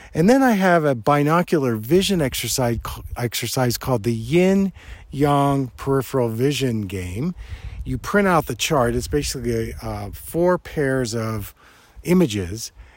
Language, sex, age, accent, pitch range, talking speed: English, male, 50-69, American, 120-155 Hz, 125 wpm